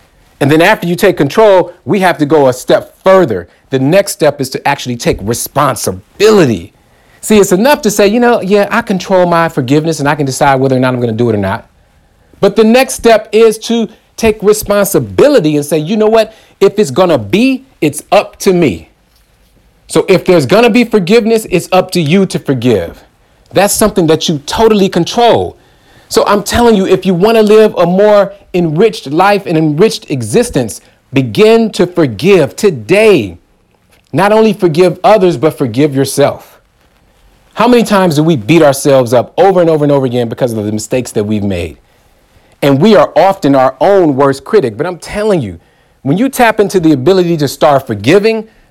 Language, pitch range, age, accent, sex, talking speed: English, 140-210 Hz, 40-59, American, male, 195 wpm